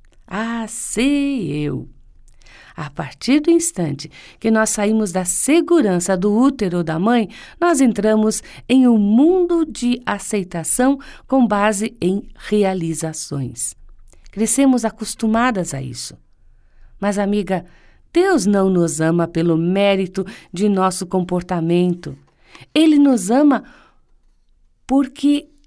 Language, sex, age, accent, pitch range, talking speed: Portuguese, female, 50-69, Brazilian, 180-255 Hz, 110 wpm